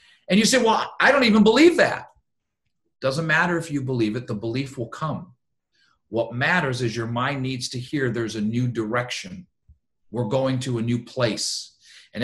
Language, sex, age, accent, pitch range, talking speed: English, male, 50-69, American, 115-145 Hz, 185 wpm